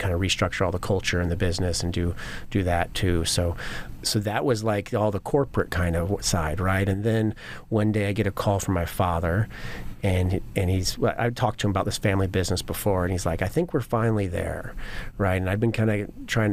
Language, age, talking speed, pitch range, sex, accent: English, 30-49, 230 wpm, 95-110 Hz, male, American